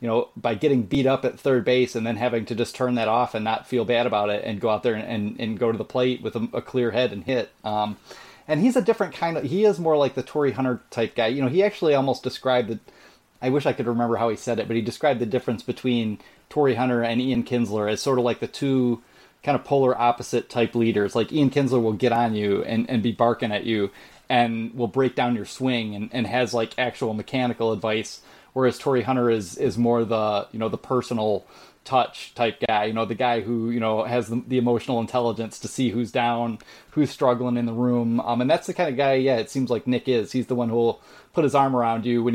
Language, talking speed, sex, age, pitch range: English, 255 wpm, male, 30-49, 115-130 Hz